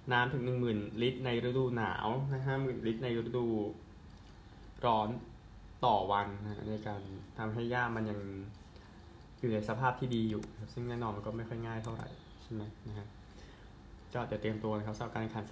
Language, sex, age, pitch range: Thai, male, 20-39, 105-125 Hz